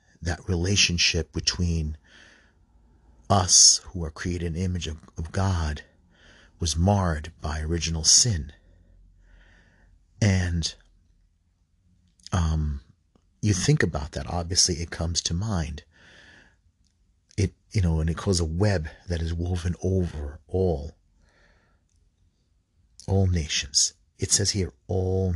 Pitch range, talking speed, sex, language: 80-95 Hz, 110 wpm, male, English